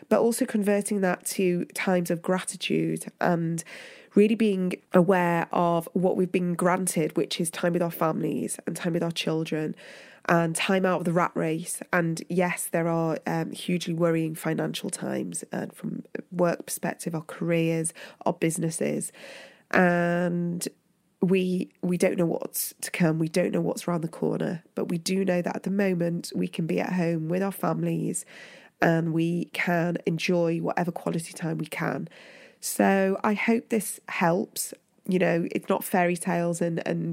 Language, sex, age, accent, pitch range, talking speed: English, female, 20-39, British, 170-195 Hz, 170 wpm